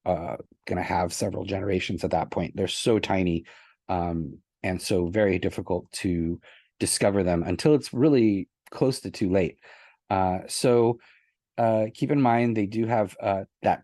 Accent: American